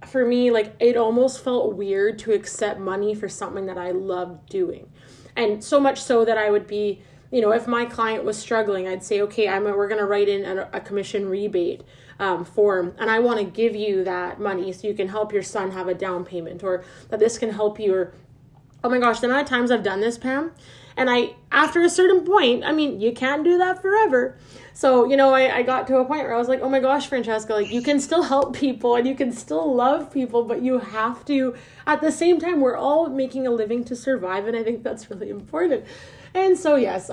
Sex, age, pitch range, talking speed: female, 20-39, 190-255 Hz, 240 wpm